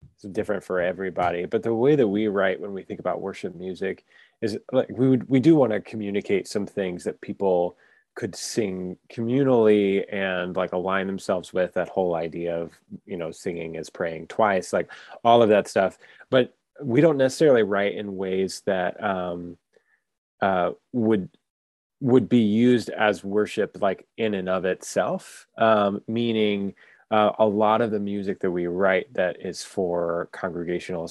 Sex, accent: male, American